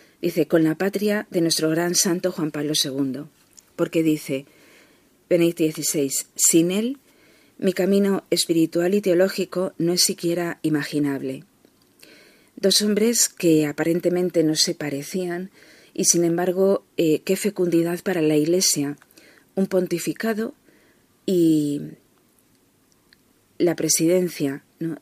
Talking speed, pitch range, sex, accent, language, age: 115 wpm, 155-185 Hz, female, Spanish, Spanish, 40-59